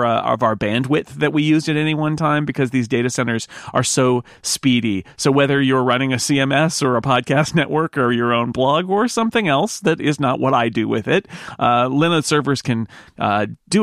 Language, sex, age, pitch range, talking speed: English, male, 40-59, 120-160 Hz, 210 wpm